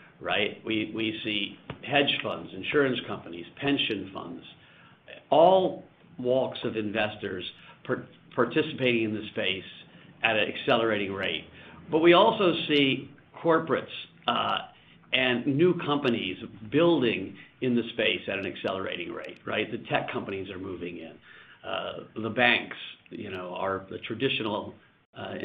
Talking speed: 130 wpm